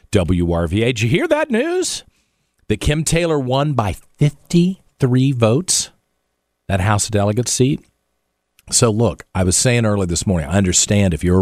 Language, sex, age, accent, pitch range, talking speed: English, male, 50-69, American, 85-115 Hz, 160 wpm